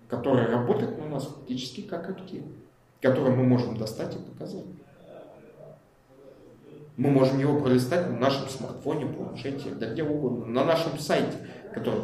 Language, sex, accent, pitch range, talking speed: Russian, male, native, 125-160 Hz, 125 wpm